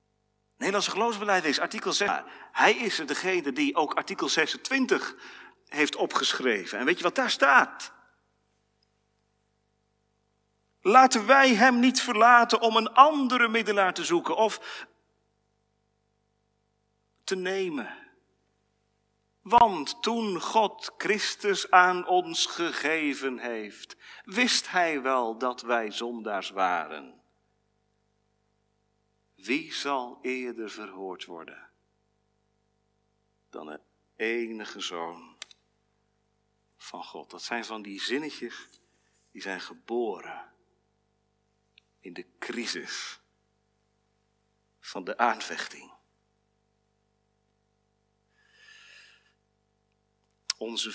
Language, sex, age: Dutch, male, 40-59